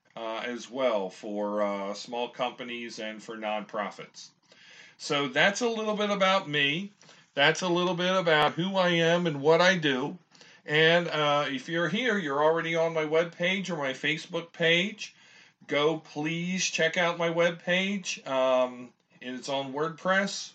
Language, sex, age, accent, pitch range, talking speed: English, male, 40-59, American, 140-180 Hz, 160 wpm